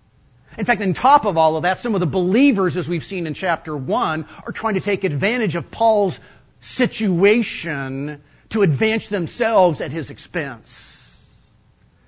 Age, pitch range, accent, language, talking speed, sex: 50-69, 125-185 Hz, American, English, 160 wpm, male